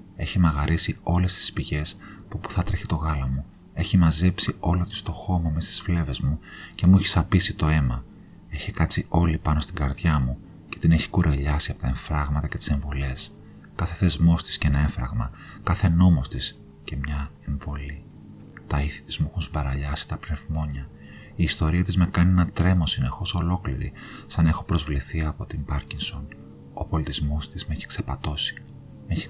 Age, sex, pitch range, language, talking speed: 40-59, male, 75-90 Hz, Greek, 180 wpm